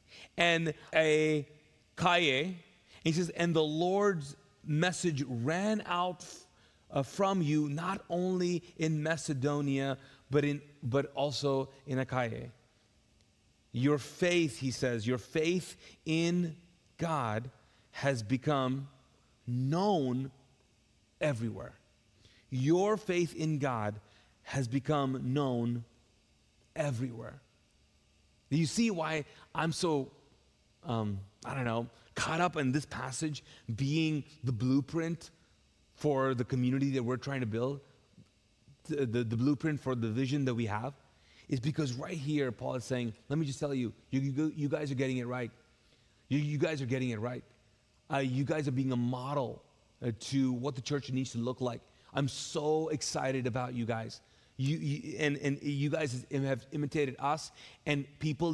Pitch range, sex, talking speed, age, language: 125-155 Hz, male, 145 wpm, 30-49, English